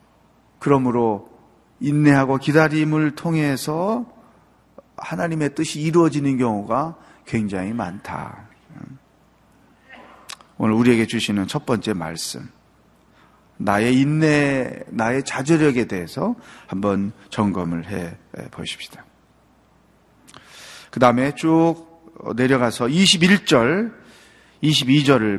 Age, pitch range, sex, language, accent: 30-49, 120-155 Hz, male, Korean, native